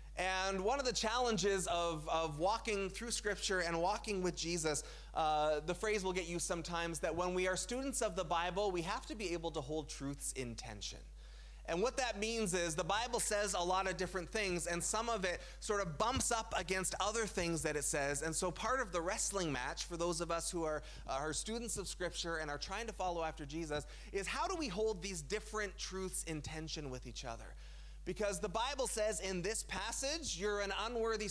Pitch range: 150-195 Hz